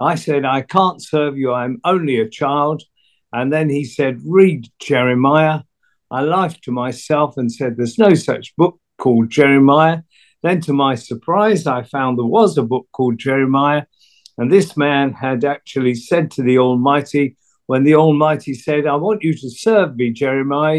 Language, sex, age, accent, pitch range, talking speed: English, male, 50-69, British, 130-160 Hz, 175 wpm